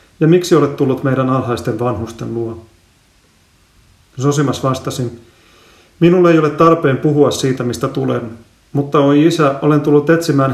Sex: male